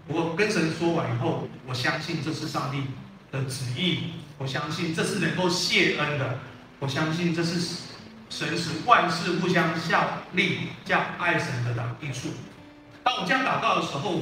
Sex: male